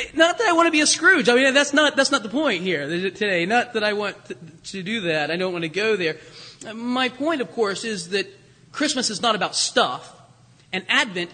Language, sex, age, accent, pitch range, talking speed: English, male, 30-49, American, 210-285 Hz, 240 wpm